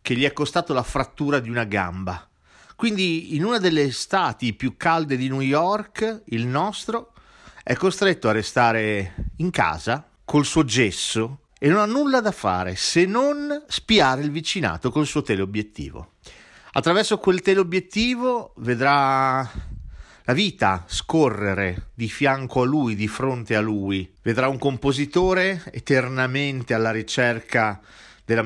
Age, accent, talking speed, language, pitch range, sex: 40-59, native, 140 wpm, Italian, 105-155 Hz, male